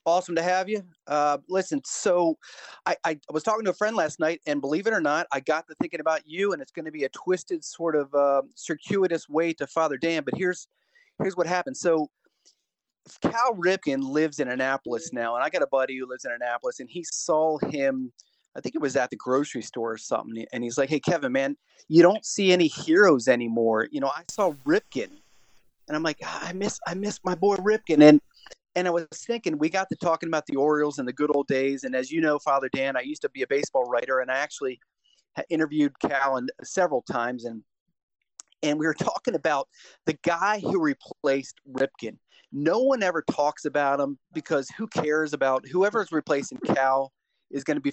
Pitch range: 135-180 Hz